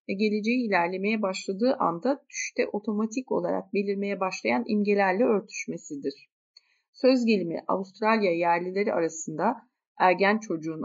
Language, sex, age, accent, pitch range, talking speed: Turkish, female, 40-59, native, 180-245 Hz, 105 wpm